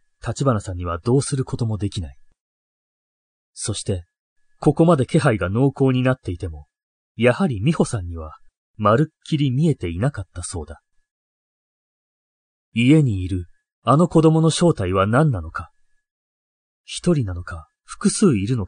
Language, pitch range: Japanese, 95-140 Hz